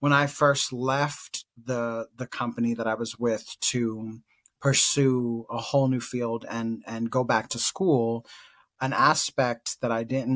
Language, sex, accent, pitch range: English, male, American, 115-135 Hz